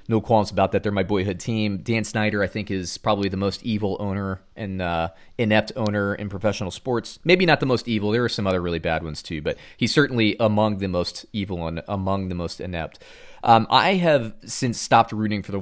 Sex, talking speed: male, 225 wpm